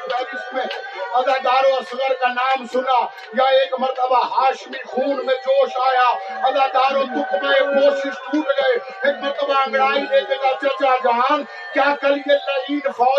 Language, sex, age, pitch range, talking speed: Urdu, male, 50-69, 255-285 Hz, 75 wpm